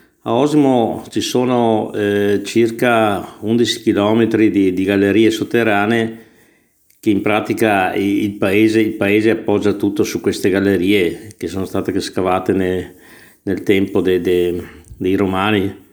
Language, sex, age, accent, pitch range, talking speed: Italian, male, 50-69, native, 95-115 Hz, 135 wpm